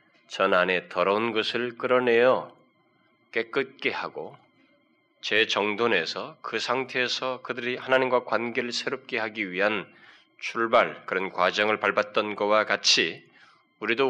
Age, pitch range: 20-39, 105-130 Hz